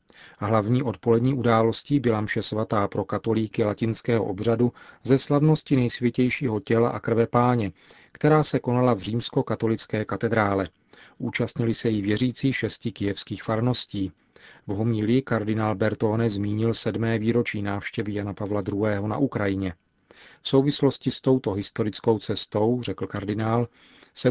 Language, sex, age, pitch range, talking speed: Czech, male, 40-59, 105-120 Hz, 130 wpm